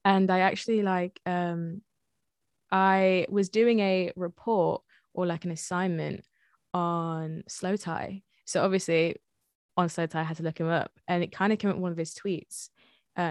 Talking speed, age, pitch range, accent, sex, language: 180 wpm, 20-39, 170-195 Hz, British, female, English